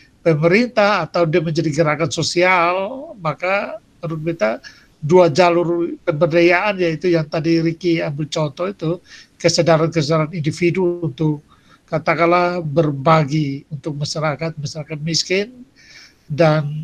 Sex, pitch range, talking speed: male, 160-195 Hz, 105 wpm